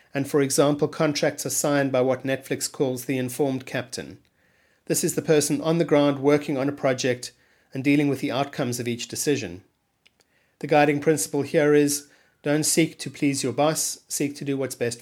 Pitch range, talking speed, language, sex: 125-150 Hz, 190 wpm, English, male